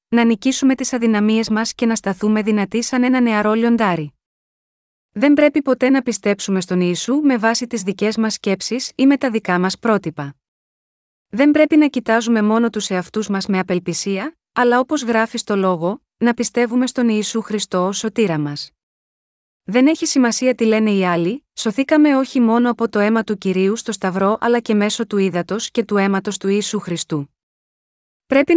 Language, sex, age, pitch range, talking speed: Greek, female, 30-49, 195-240 Hz, 175 wpm